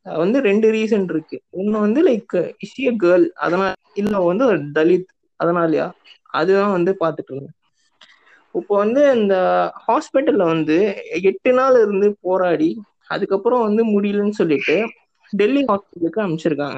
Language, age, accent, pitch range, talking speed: Tamil, 20-39, native, 175-245 Hz, 115 wpm